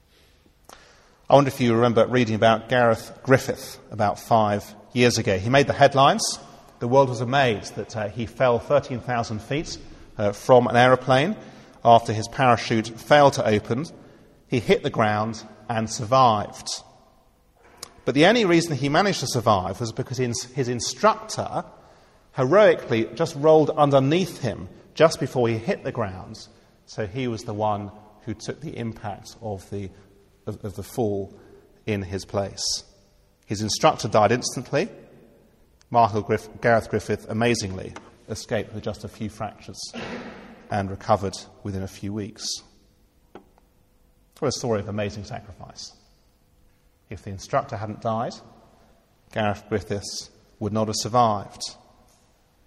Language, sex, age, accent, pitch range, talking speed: English, male, 40-59, British, 105-130 Hz, 135 wpm